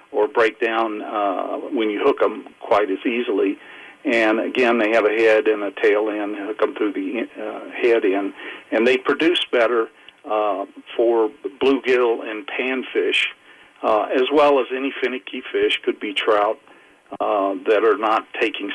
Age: 50-69